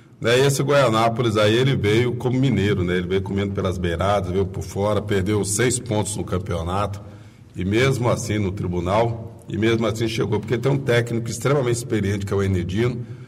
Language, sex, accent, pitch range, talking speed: Portuguese, male, Brazilian, 100-120 Hz, 190 wpm